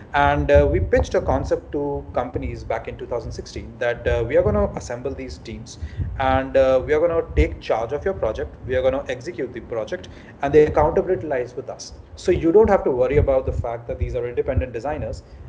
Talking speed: 225 wpm